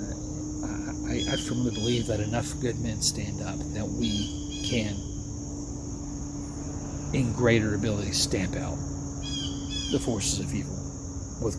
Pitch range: 100-115 Hz